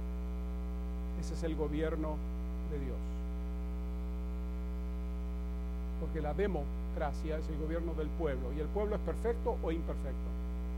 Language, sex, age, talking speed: English, male, 50-69, 115 wpm